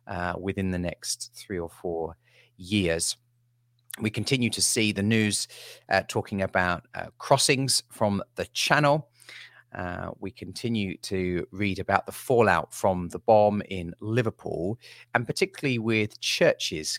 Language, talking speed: English, 140 wpm